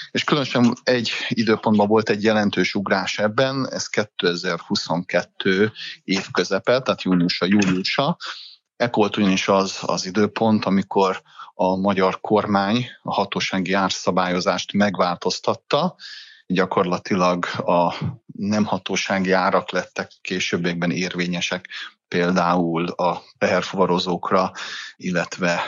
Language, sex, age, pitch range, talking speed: Hungarian, male, 30-49, 90-110 Hz, 95 wpm